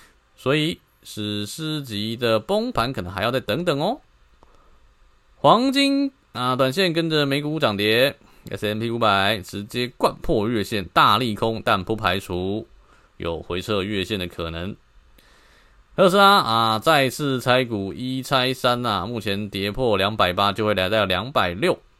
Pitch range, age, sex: 100-150 Hz, 20-39, male